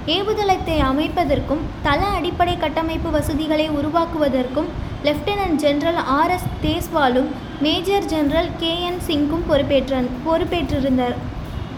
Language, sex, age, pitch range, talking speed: Tamil, female, 20-39, 290-355 Hz, 80 wpm